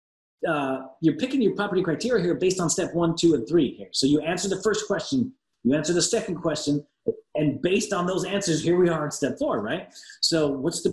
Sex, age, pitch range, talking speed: male, 30-49, 135-185 Hz, 225 wpm